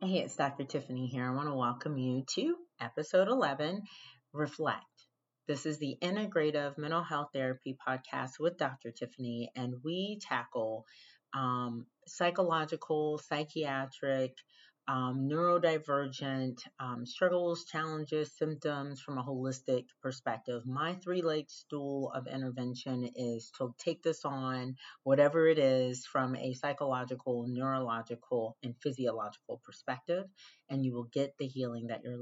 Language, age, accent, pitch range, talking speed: English, 30-49, American, 130-155 Hz, 130 wpm